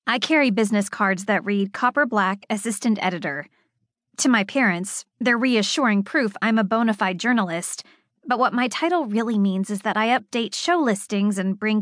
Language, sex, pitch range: English, female, 195-245 Hz